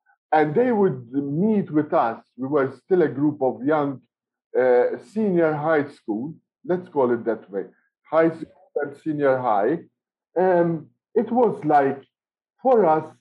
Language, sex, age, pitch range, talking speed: English, male, 50-69, 130-205 Hz, 140 wpm